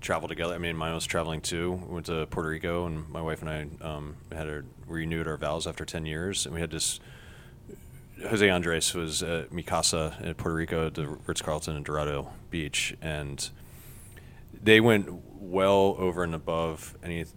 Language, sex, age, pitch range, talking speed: English, male, 30-49, 80-90 Hz, 185 wpm